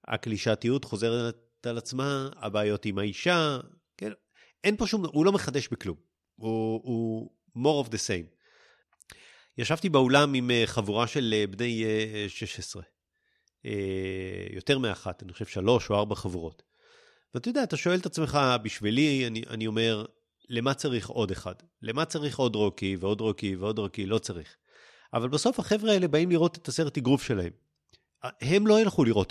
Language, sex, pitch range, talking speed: Hebrew, male, 105-140 Hz, 155 wpm